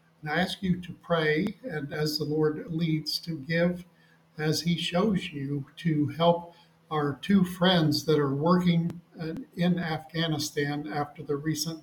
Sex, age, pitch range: male, 50-69, 145-160 Hz